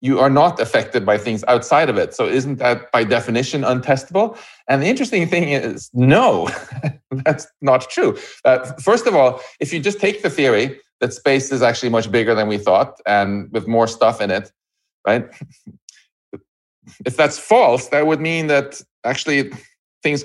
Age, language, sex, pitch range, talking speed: 40-59, English, male, 115-155 Hz, 175 wpm